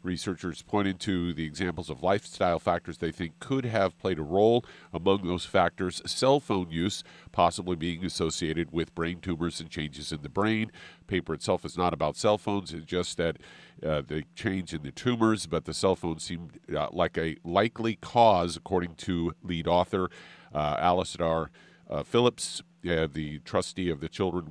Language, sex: English, male